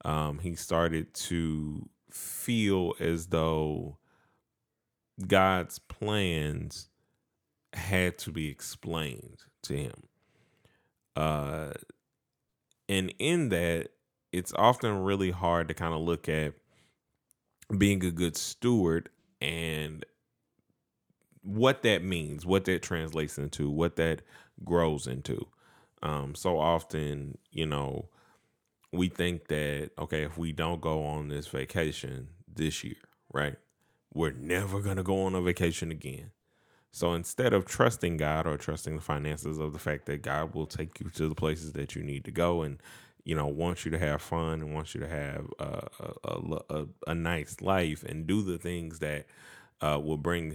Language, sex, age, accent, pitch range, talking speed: English, male, 10-29, American, 75-90 Hz, 145 wpm